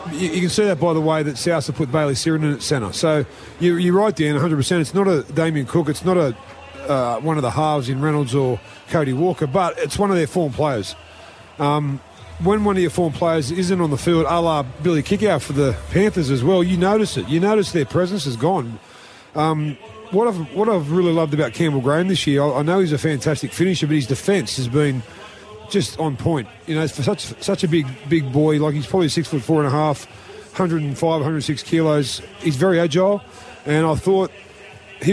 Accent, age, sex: Australian, 40-59, male